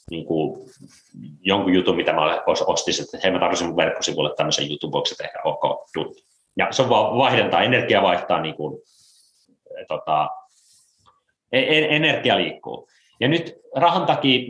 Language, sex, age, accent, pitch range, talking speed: Finnish, male, 30-49, native, 95-130 Hz, 145 wpm